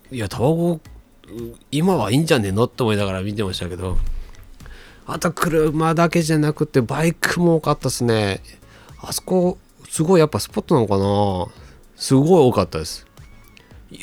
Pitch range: 90-130 Hz